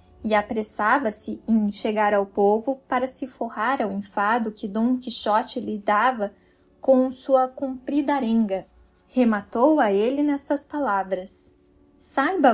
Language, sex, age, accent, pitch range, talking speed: Portuguese, female, 10-29, Brazilian, 210-265 Hz, 125 wpm